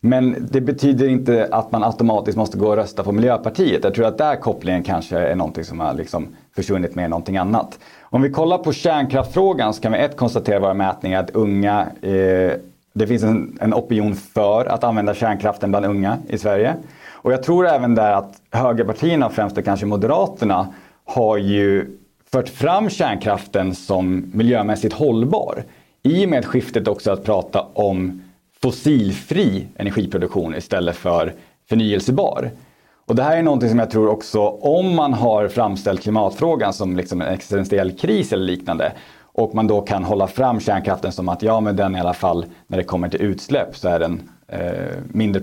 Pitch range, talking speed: 95-115 Hz, 175 wpm